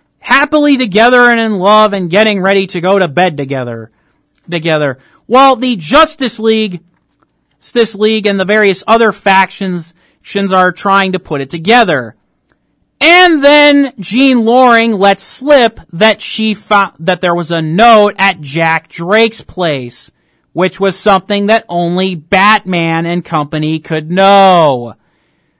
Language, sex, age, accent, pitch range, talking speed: English, male, 40-59, American, 175-235 Hz, 140 wpm